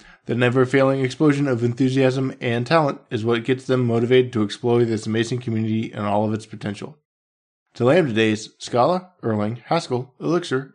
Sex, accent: male, American